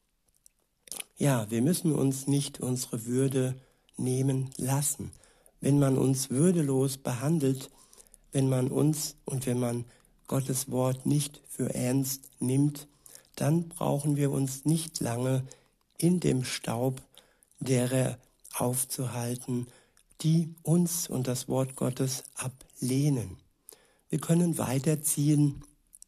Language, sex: German, male